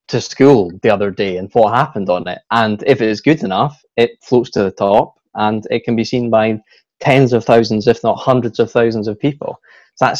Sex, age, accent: male, 20-39, British